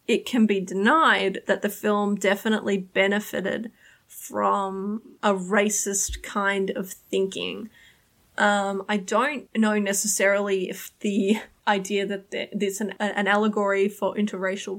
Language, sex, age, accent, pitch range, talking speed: English, female, 20-39, Australian, 200-225 Hz, 120 wpm